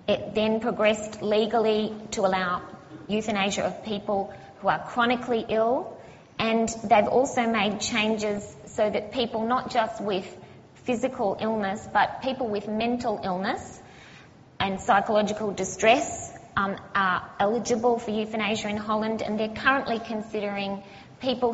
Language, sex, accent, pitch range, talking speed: English, female, Australian, 195-230 Hz, 130 wpm